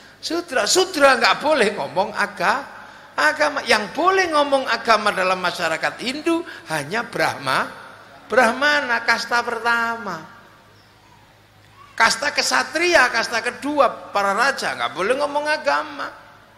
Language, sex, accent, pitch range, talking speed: Indonesian, male, native, 195-290 Hz, 105 wpm